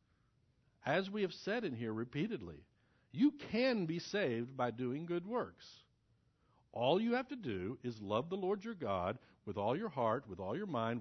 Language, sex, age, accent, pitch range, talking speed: English, male, 60-79, American, 105-160 Hz, 185 wpm